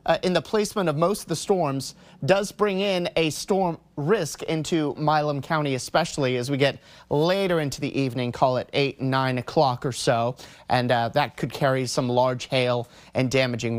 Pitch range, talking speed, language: 130-165 Hz, 185 wpm, English